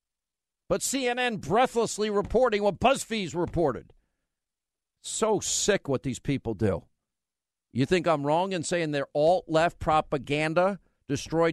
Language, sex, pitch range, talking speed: English, male, 145-195 Hz, 120 wpm